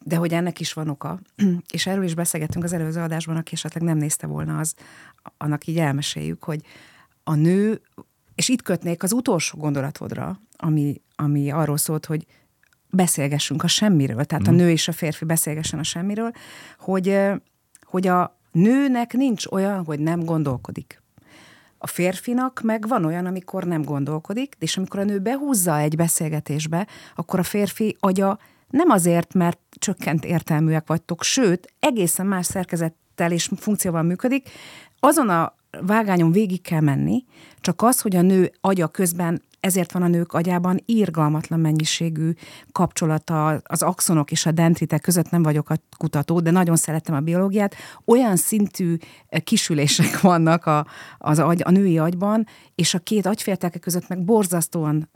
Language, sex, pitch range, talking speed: Hungarian, female, 160-200 Hz, 155 wpm